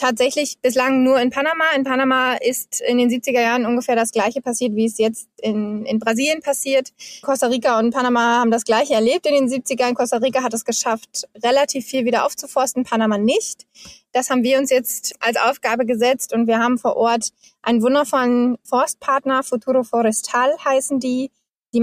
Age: 20-39